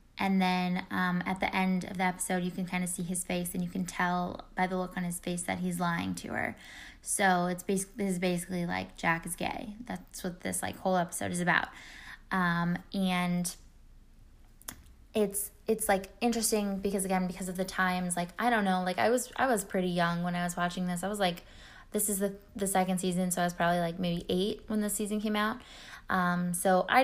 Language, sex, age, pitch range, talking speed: English, female, 10-29, 175-195 Hz, 225 wpm